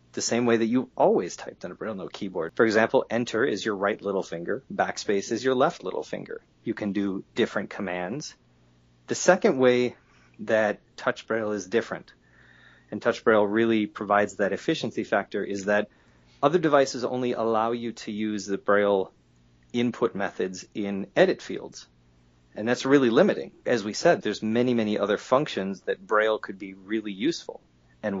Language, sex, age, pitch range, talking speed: English, male, 30-49, 95-115 Hz, 170 wpm